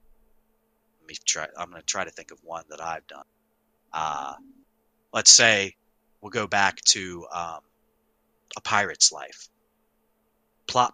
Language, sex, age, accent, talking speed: English, male, 30-49, American, 130 wpm